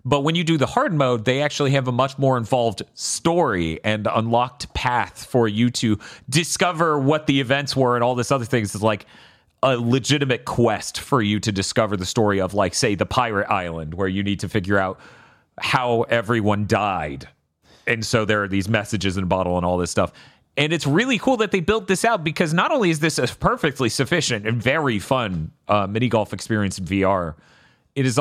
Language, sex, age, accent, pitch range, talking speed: English, male, 30-49, American, 105-145 Hz, 210 wpm